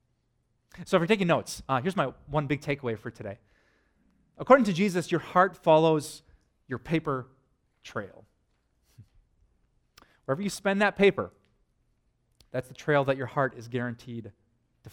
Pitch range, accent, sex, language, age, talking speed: 125-165 Hz, American, male, English, 30-49, 145 wpm